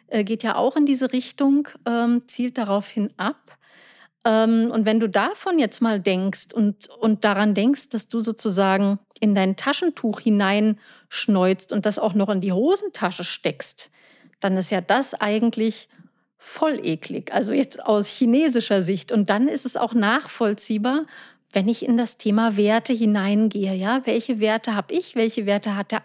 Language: English